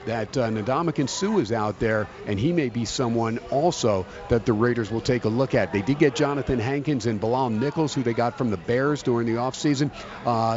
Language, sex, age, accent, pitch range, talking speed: English, male, 50-69, American, 120-145 Hz, 220 wpm